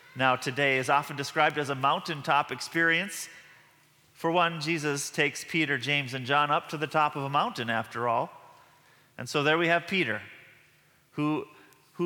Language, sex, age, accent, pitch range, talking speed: English, male, 30-49, American, 130-160 Hz, 170 wpm